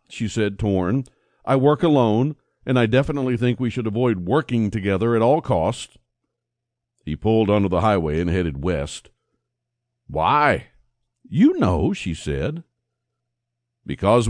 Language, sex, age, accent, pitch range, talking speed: English, male, 50-69, American, 110-140 Hz, 135 wpm